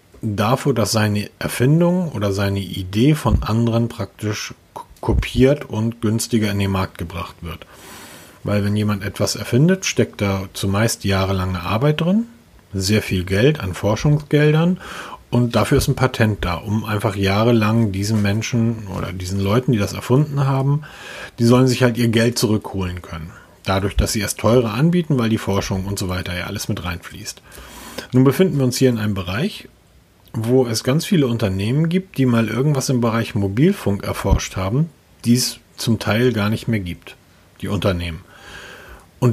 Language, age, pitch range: German, 40-59, 100-125 Hz